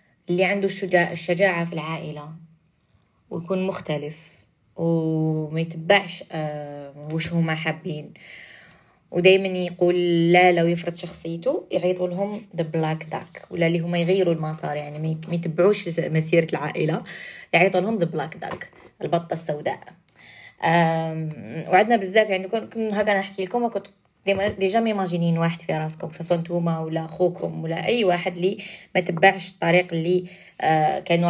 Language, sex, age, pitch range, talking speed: Arabic, female, 20-39, 160-190 Hz, 135 wpm